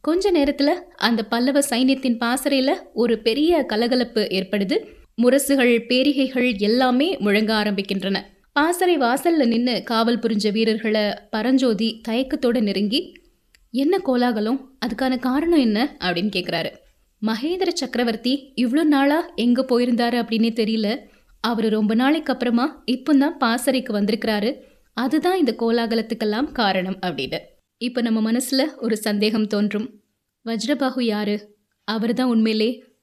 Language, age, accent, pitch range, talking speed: Tamil, 20-39, native, 220-270 Hz, 115 wpm